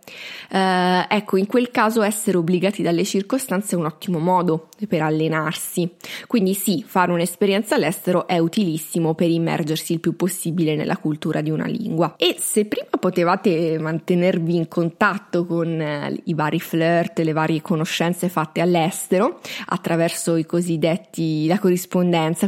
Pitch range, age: 165-190 Hz, 20-39